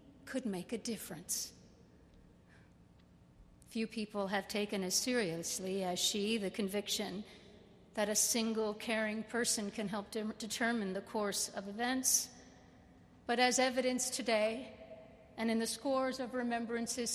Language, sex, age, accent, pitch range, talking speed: English, female, 50-69, American, 195-250 Hz, 130 wpm